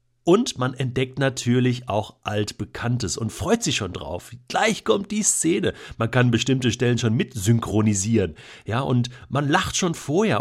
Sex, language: male, German